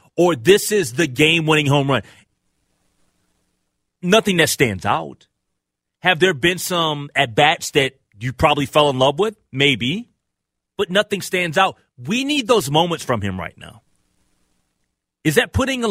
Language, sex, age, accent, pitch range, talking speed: English, male, 30-49, American, 135-190 Hz, 150 wpm